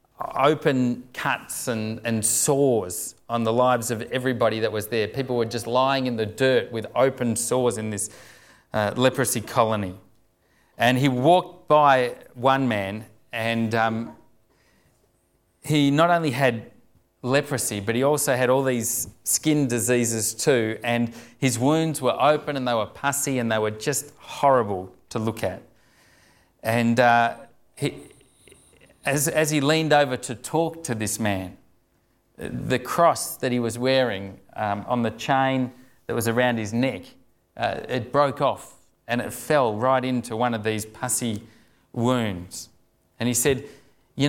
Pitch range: 110-135 Hz